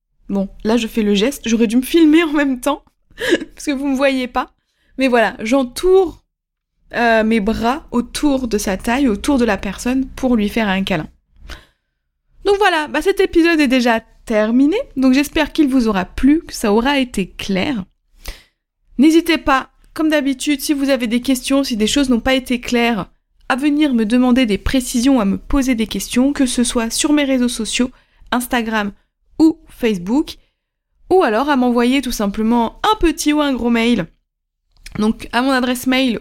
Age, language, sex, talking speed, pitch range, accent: 20-39, French, female, 185 wpm, 225-290 Hz, French